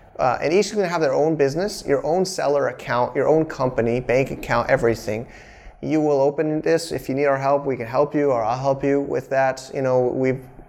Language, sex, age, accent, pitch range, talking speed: English, male, 30-49, American, 125-145 Hz, 235 wpm